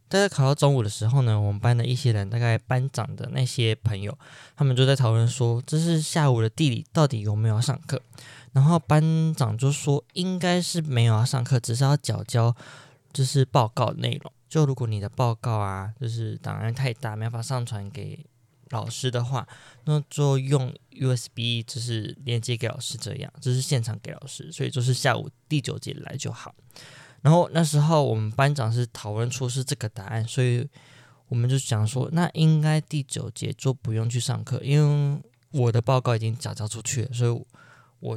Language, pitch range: Chinese, 120-150 Hz